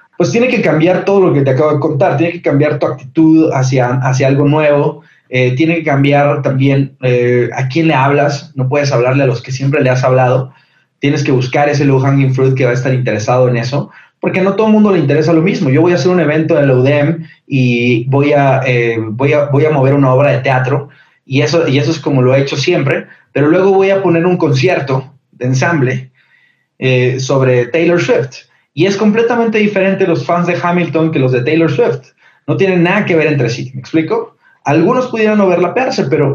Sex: male